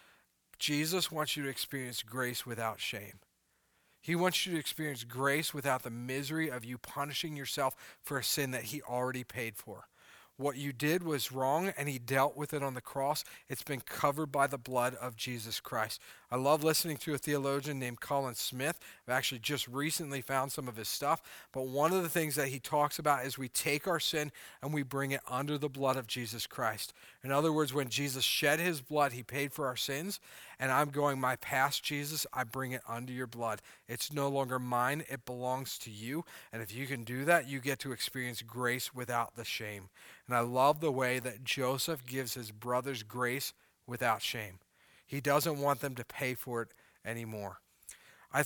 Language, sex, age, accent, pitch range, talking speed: English, male, 40-59, American, 125-145 Hz, 200 wpm